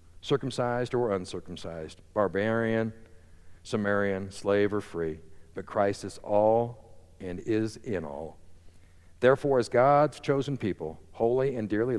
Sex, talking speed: male, 120 wpm